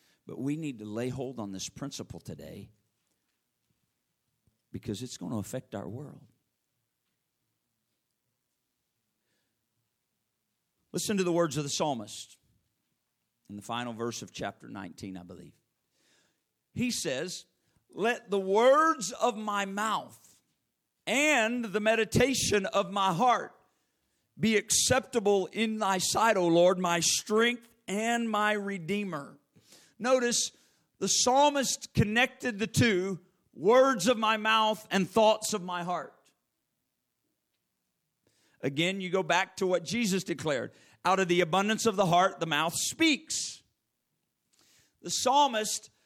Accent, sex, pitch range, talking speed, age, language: American, male, 175-235 Hz, 120 wpm, 50-69, English